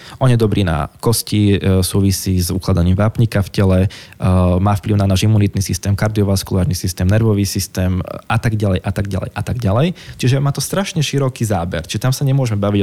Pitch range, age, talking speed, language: 95-125 Hz, 20-39, 190 wpm, Slovak